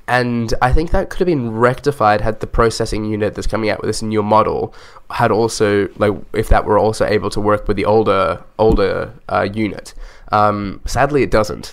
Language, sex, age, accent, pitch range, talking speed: English, male, 10-29, Australian, 100-110 Hz, 200 wpm